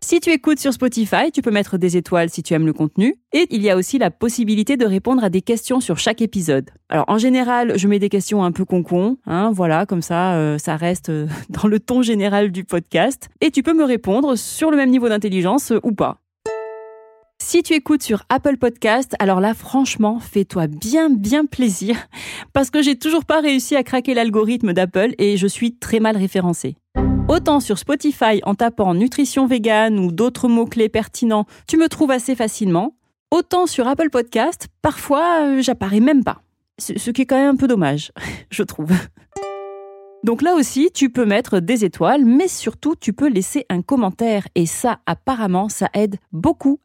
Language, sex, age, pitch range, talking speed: French, female, 30-49, 195-265 Hz, 195 wpm